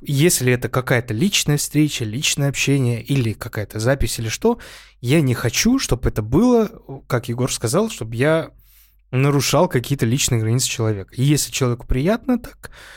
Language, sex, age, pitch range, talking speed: Russian, male, 20-39, 120-160 Hz, 155 wpm